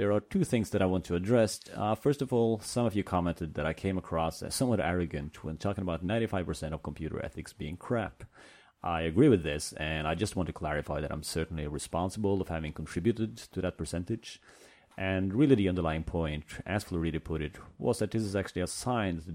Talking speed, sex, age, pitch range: 220 wpm, male, 30-49, 80-105 Hz